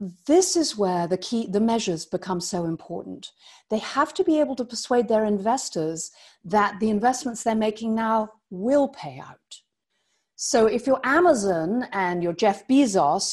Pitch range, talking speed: 175-250 Hz, 160 wpm